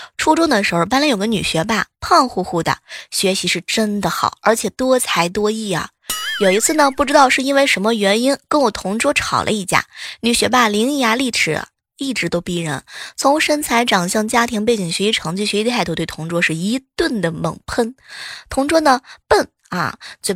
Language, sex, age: Chinese, female, 20-39